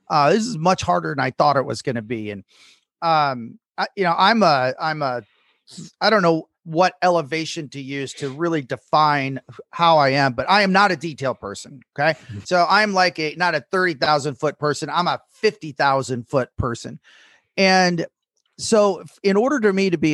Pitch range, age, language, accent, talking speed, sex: 135-180 Hz, 30-49, English, American, 195 wpm, male